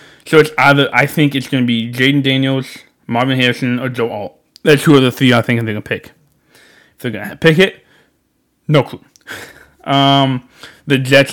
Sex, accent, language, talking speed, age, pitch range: male, American, English, 200 wpm, 20-39, 120-140 Hz